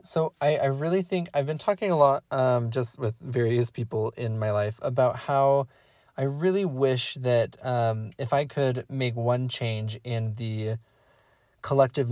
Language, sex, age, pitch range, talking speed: English, male, 20-39, 120-150 Hz, 170 wpm